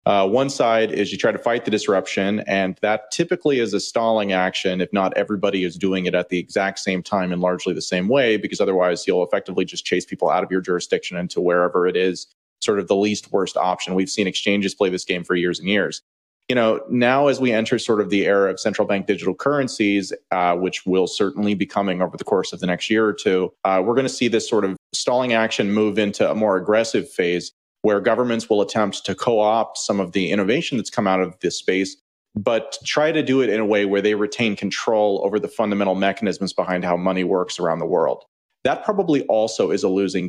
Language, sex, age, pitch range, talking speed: English, male, 30-49, 95-110 Hz, 230 wpm